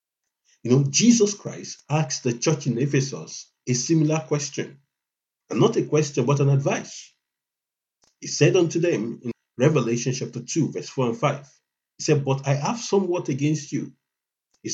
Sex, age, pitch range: male, 50-69, 105-155 Hz